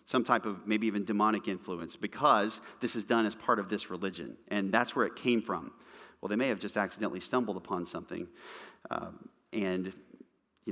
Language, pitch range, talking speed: English, 100-115 Hz, 190 wpm